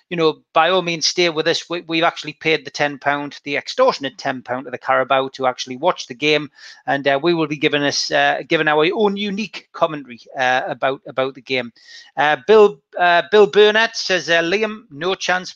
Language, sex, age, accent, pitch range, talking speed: English, male, 30-49, British, 145-195 Hz, 210 wpm